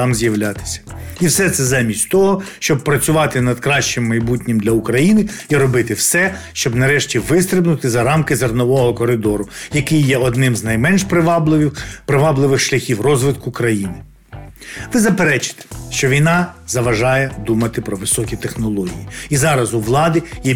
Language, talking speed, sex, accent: Ukrainian, 140 wpm, male, native